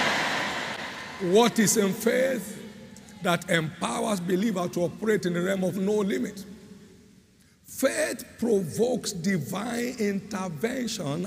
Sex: male